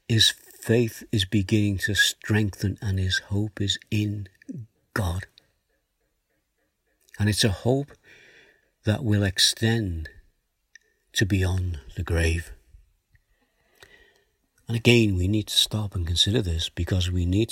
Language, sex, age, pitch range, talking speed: English, male, 60-79, 90-110 Hz, 120 wpm